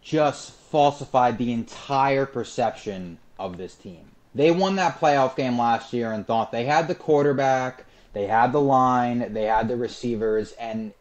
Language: English